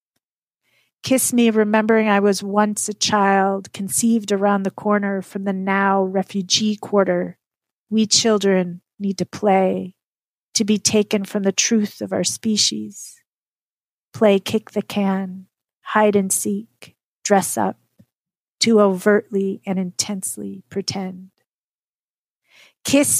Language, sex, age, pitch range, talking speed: English, female, 40-59, 190-215 Hz, 120 wpm